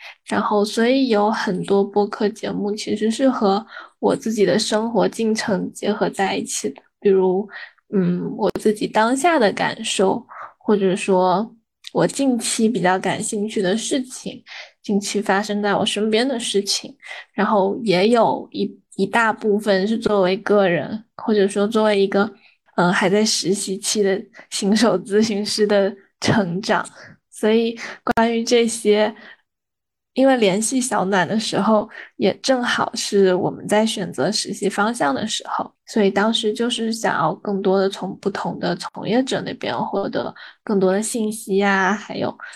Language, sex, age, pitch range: Chinese, female, 10-29, 195-220 Hz